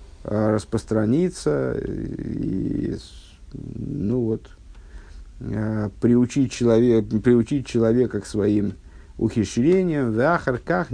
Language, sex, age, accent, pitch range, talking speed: Russian, male, 50-69, native, 100-120 Hz, 70 wpm